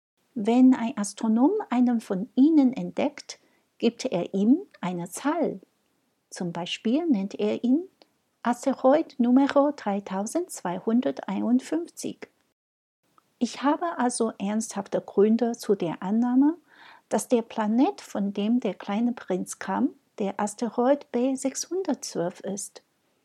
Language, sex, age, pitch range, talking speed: German, female, 60-79, 200-275 Hz, 105 wpm